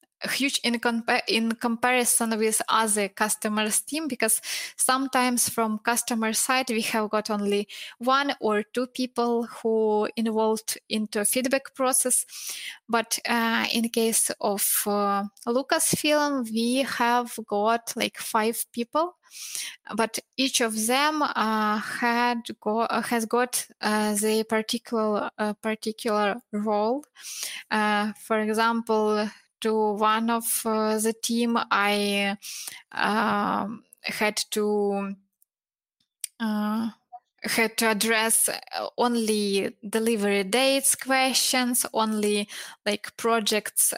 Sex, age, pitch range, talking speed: female, 20-39, 210-240 Hz, 110 wpm